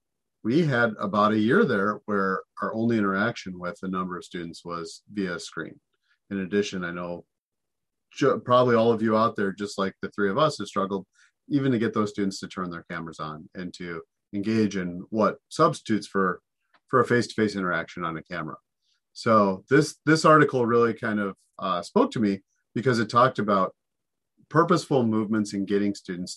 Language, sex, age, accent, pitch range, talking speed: English, male, 40-59, American, 95-115 Hz, 185 wpm